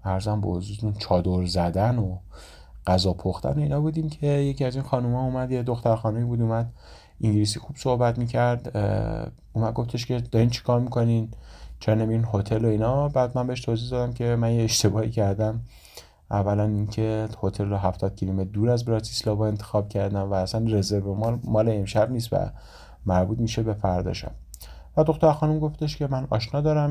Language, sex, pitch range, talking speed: Persian, male, 100-120 Hz, 185 wpm